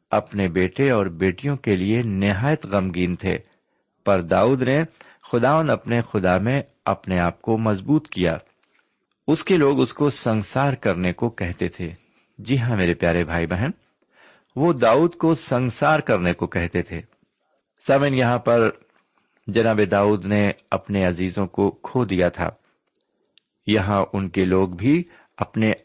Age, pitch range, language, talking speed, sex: 50-69, 95-130 Hz, Urdu, 145 wpm, male